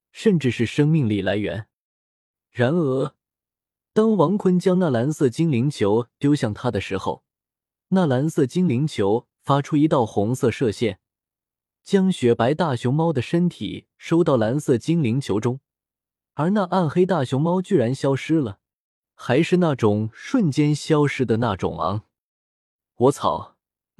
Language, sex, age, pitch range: Chinese, male, 20-39, 115-170 Hz